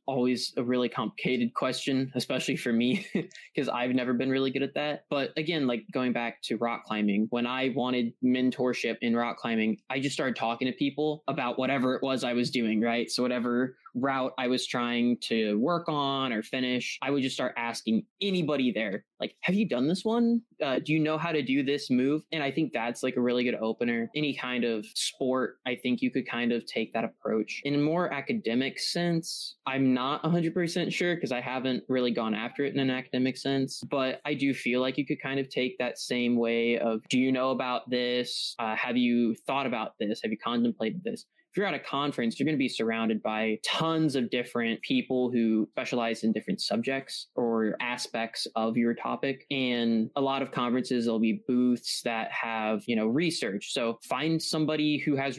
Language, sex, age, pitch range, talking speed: English, male, 20-39, 120-140 Hz, 210 wpm